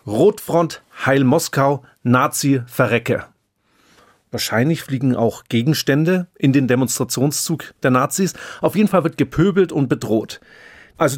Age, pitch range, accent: 40-59, 125-165 Hz, German